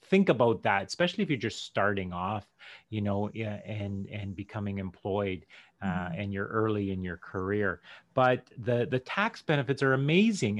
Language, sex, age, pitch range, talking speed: English, male, 30-49, 100-130 Hz, 165 wpm